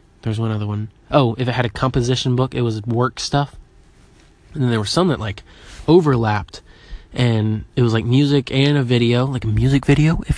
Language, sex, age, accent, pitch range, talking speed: English, male, 20-39, American, 115-140 Hz, 210 wpm